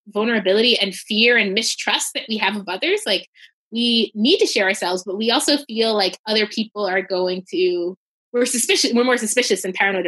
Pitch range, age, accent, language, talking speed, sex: 190-245 Hz, 20-39, American, English, 195 wpm, female